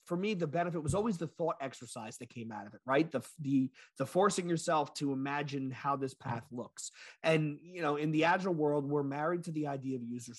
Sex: male